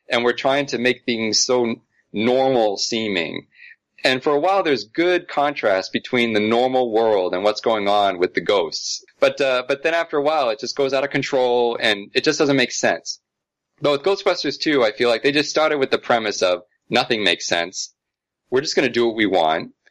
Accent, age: American, 30-49